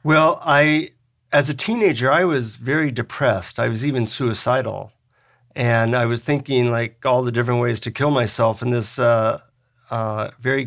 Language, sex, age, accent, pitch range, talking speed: English, male, 50-69, American, 120-140 Hz, 170 wpm